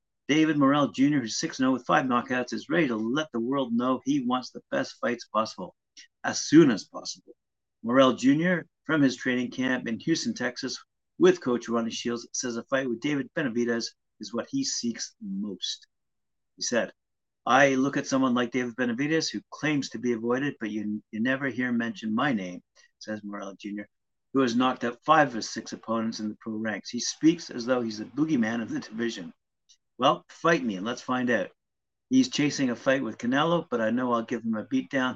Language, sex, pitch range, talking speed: English, male, 110-150 Hz, 200 wpm